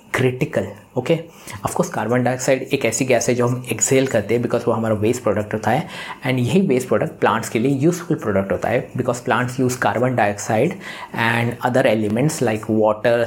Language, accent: Hindi, native